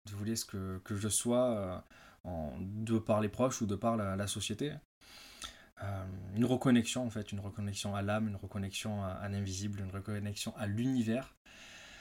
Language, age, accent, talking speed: French, 20-39, French, 180 wpm